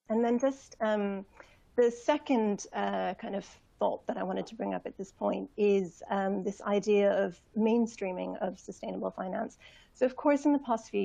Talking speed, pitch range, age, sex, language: 190 wpm, 185-225 Hz, 30-49, female, English